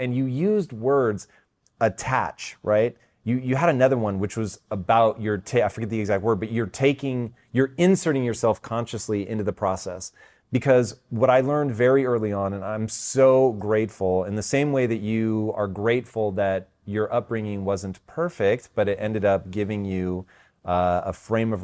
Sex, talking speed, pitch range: male, 180 wpm, 100-120 Hz